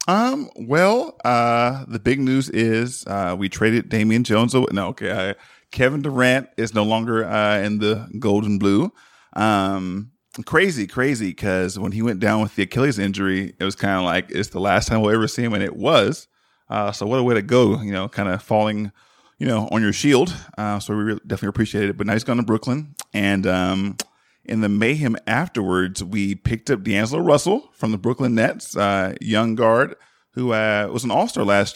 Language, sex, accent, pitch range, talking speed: English, male, American, 100-115 Hz, 205 wpm